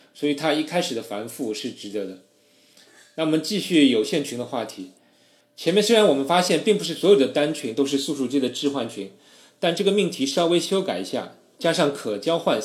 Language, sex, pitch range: Chinese, male, 125-190 Hz